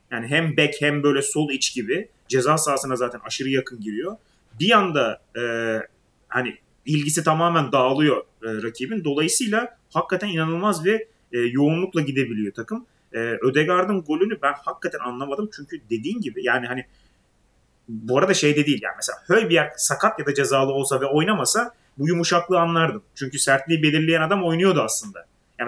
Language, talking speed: Turkish, 160 wpm